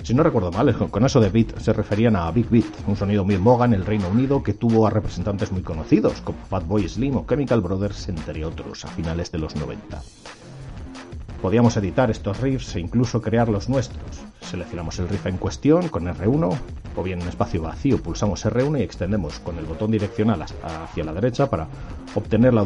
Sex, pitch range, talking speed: male, 90-115 Hz, 200 wpm